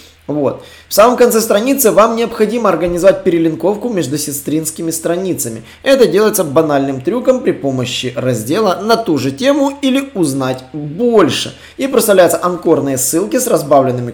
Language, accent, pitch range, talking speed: Russian, native, 140-215 Hz, 130 wpm